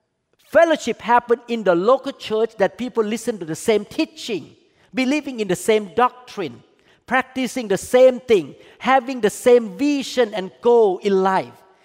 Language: Thai